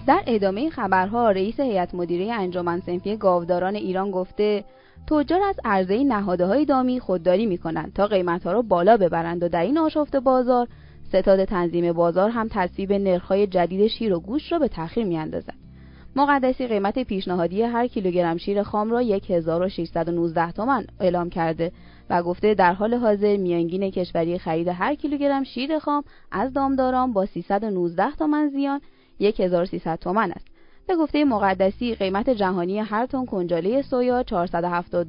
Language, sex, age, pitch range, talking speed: Persian, female, 20-39, 180-245 Hz, 150 wpm